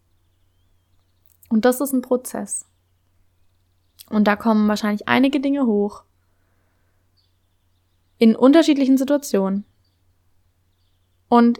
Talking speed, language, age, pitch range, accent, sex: 85 wpm, German, 20-39, 200-260 Hz, German, female